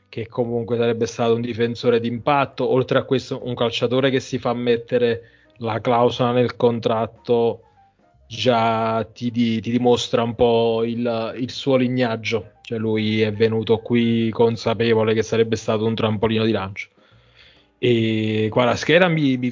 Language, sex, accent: Italian, male, native